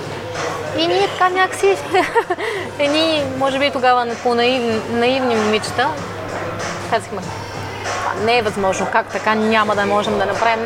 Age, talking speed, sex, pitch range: 20-39, 125 wpm, female, 210-245 Hz